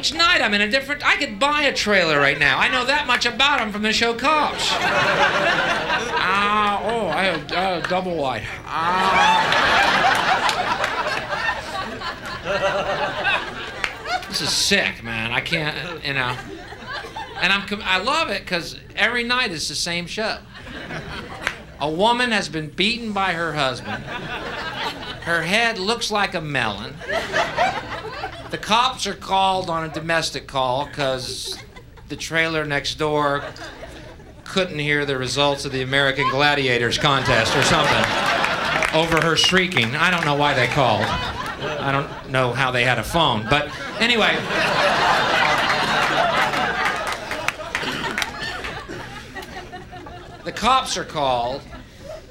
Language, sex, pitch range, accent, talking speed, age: English, male, 140-205 Hz, American, 130 wpm, 50-69